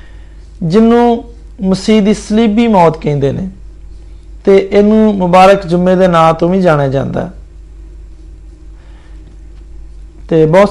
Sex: male